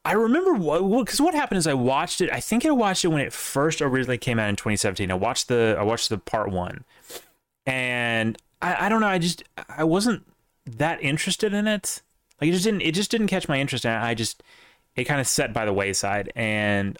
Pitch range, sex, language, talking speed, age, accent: 105-175 Hz, male, English, 235 wpm, 30-49, American